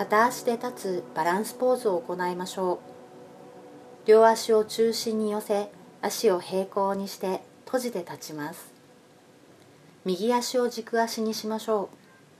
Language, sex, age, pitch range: Japanese, female, 40-59, 175-220 Hz